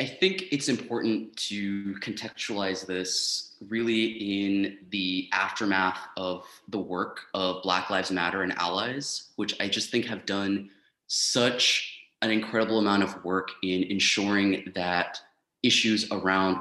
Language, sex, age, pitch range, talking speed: English, male, 20-39, 95-110 Hz, 135 wpm